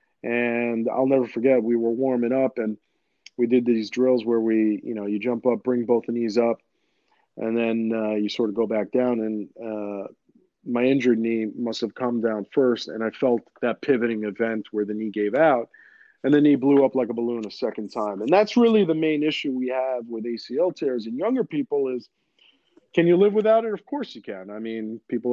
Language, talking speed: English, 220 wpm